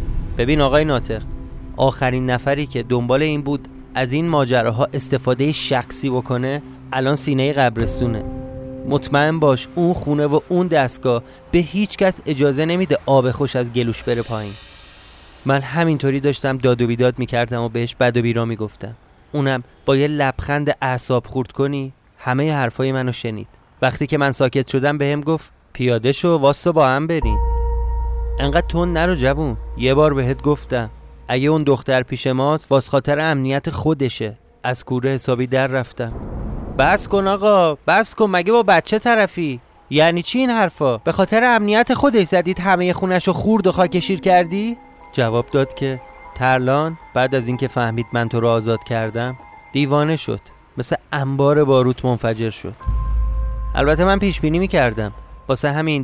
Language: Persian